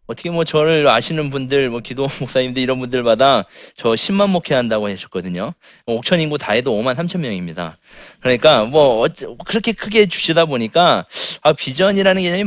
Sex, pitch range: male, 120-165 Hz